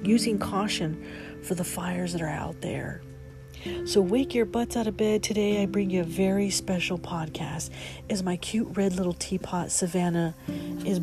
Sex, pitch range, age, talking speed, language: female, 170-205 Hz, 40-59, 175 wpm, English